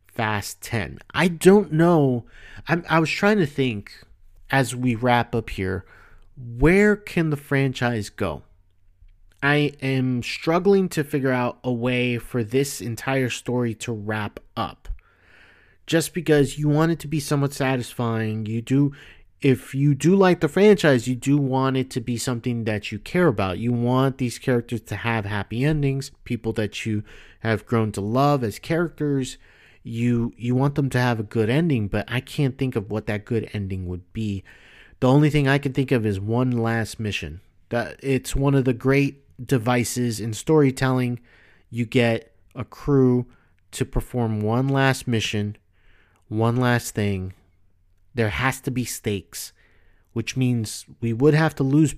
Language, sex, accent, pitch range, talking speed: English, male, American, 105-135 Hz, 165 wpm